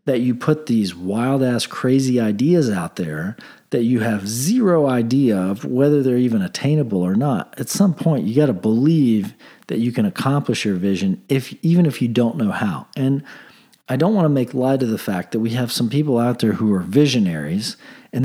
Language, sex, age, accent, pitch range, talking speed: English, male, 40-59, American, 115-150 Hz, 205 wpm